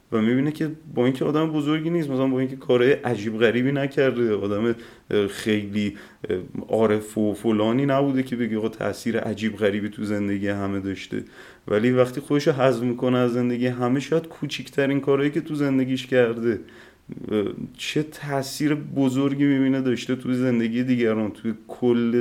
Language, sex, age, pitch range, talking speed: Persian, male, 30-49, 110-135 Hz, 155 wpm